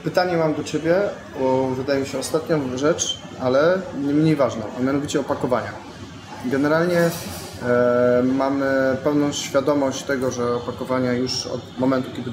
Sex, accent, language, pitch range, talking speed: male, native, Polish, 125-150 Hz, 140 wpm